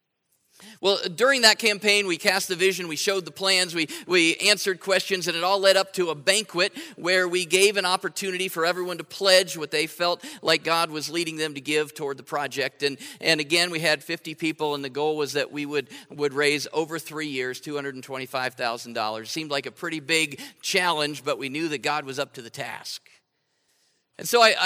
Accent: American